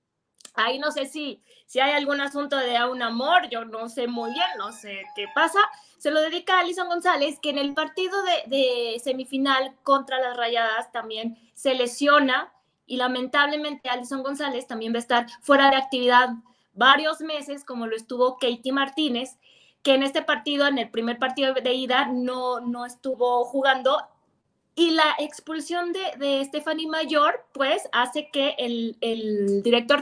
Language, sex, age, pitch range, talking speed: Spanish, female, 20-39, 250-310 Hz, 170 wpm